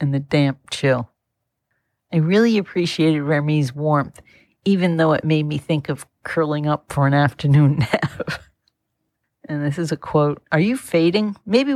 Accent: American